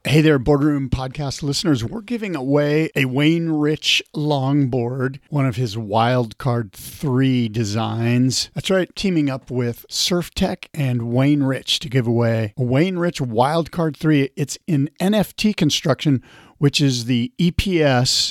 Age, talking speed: 50-69, 145 wpm